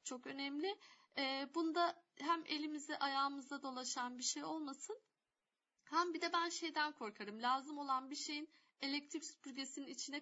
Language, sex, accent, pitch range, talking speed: Turkish, female, native, 240-310 Hz, 140 wpm